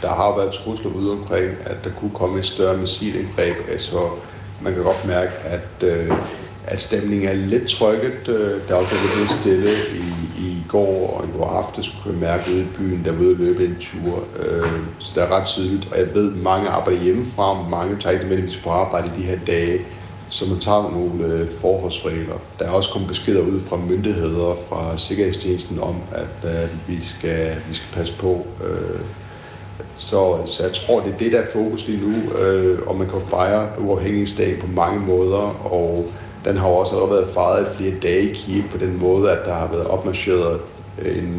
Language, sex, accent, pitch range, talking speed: Danish, male, native, 85-100 Hz, 210 wpm